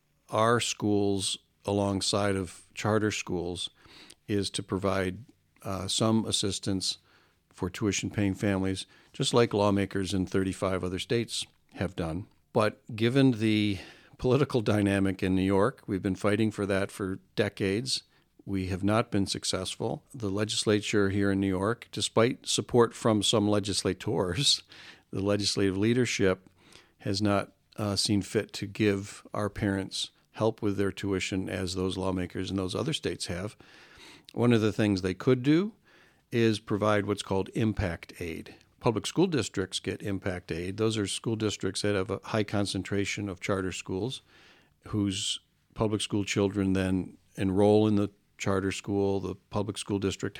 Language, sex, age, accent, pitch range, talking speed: English, male, 50-69, American, 95-110 Hz, 150 wpm